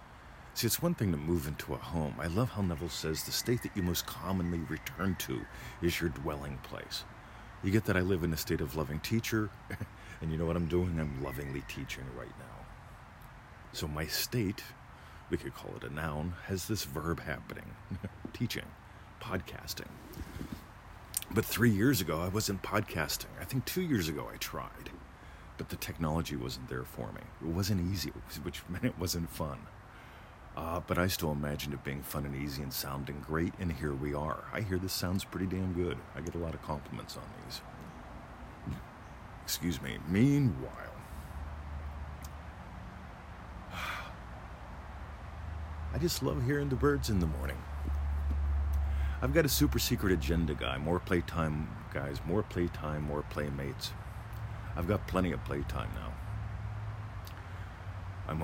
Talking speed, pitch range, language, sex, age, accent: 160 wpm, 75-100 Hz, English, male, 40-59, American